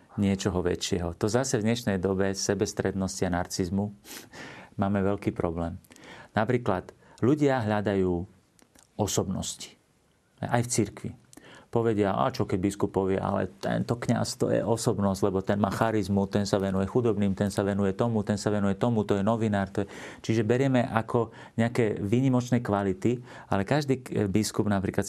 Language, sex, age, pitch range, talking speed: Slovak, male, 40-59, 95-115 Hz, 150 wpm